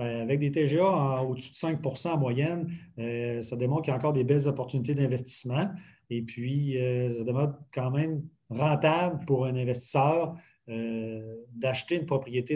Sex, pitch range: male, 125-160 Hz